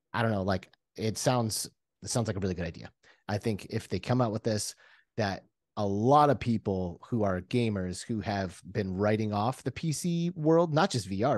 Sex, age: male, 30-49